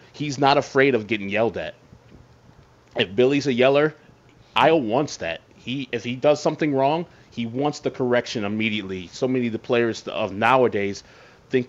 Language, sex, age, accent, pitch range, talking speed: English, male, 30-49, American, 115-140 Hz, 170 wpm